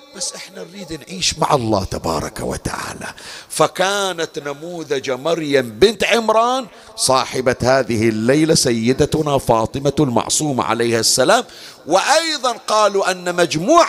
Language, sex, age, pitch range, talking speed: Arabic, male, 50-69, 130-190 Hz, 110 wpm